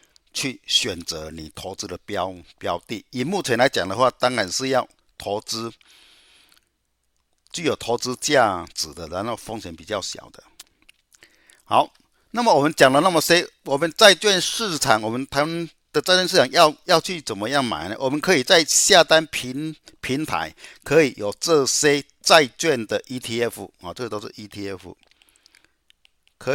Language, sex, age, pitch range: Chinese, male, 50-69, 105-160 Hz